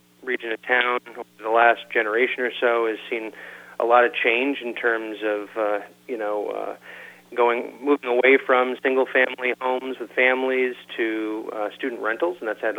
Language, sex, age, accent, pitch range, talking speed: English, male, 30-49, American, 105-120 Hz, 180 wpm